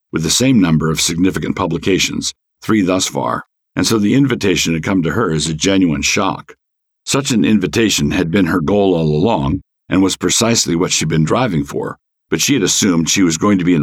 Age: 60-79